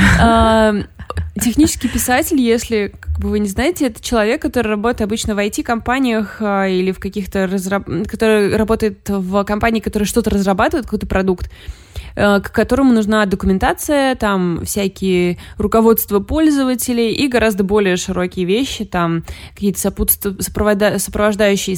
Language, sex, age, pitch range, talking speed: Russian, female, 20-39, 180-215 Hz, 115 wpm